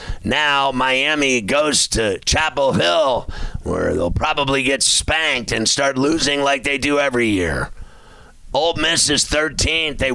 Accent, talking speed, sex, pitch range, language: American, 140 wpm, male, 135-155 Hz, English